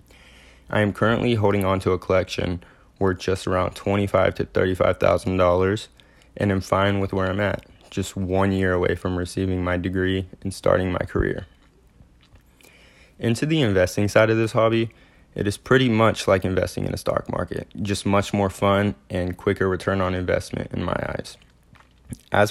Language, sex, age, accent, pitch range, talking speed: English, male, 20-39, American, 95-100 Hz, 170 wpm